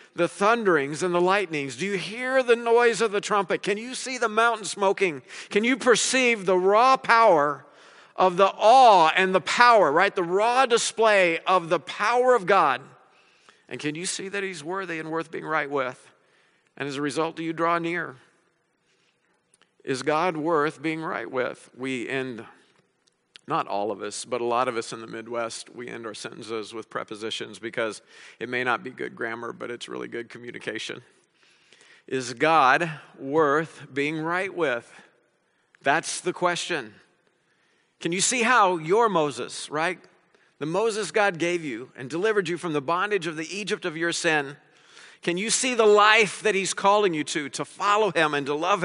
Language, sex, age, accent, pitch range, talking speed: English, male, 50-69, American, 155-205 Hz, 180 wpm